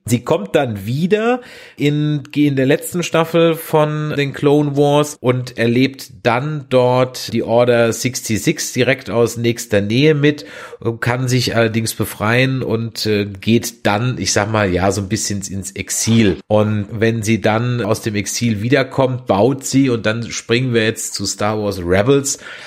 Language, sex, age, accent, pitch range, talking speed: German, male, 30-49, German, 105-130 Hz, 160 wpm